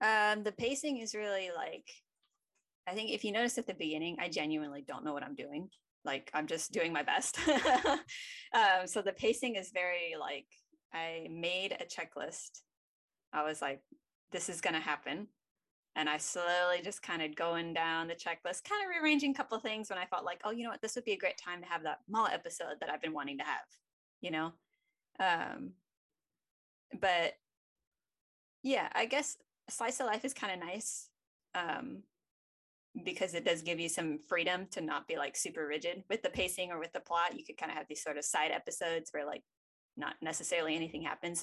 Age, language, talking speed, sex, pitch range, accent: 20-39, English, 200 wpm, female, 160-225 Hz, American